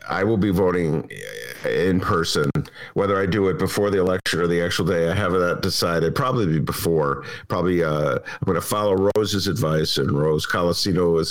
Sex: male